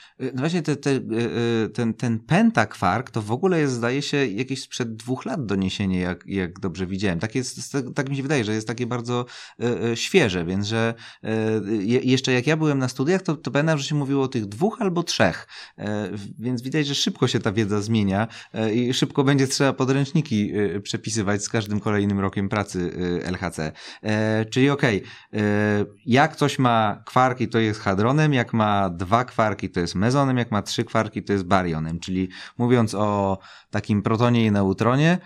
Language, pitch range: Polish, 105-140 Hz